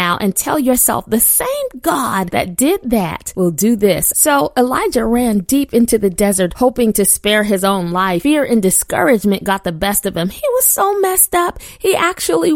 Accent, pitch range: American, 205-275 Hz